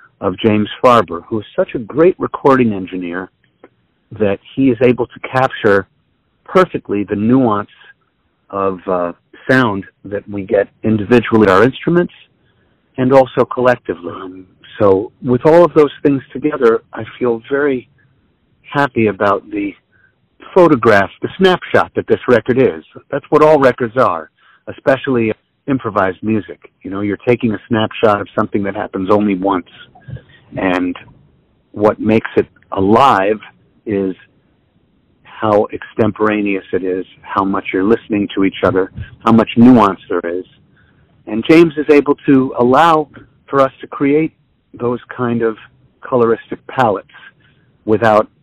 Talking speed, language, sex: 135 wpm, English, male